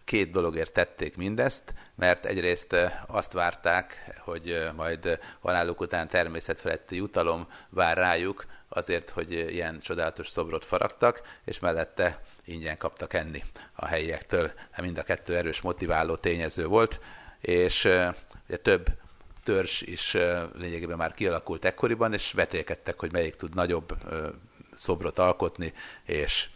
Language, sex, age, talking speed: Hungarian, male, 50-69, 120 wpm